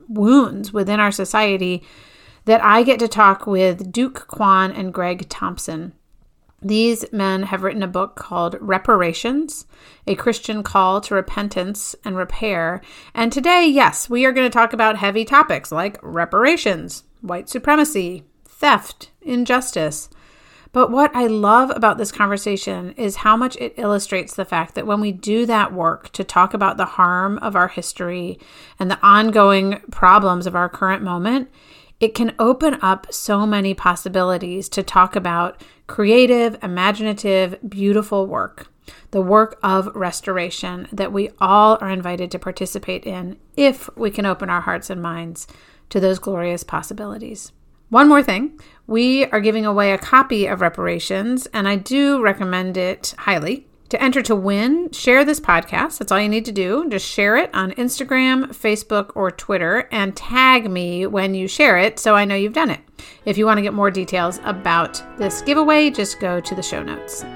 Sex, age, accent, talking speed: female, 40-59, American, 165 wpm